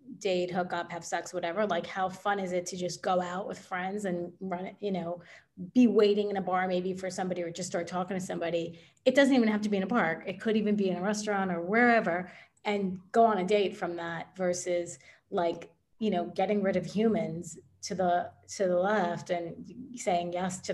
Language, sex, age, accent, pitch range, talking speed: English, female, 30-49, American, 180-220 Hz, 225 wpm